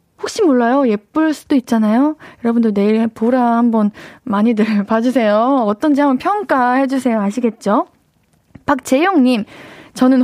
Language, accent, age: Korean, native, 20-39